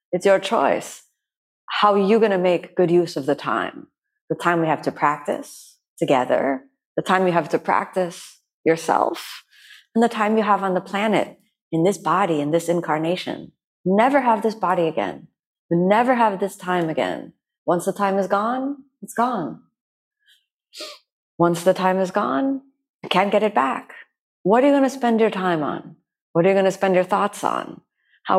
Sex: female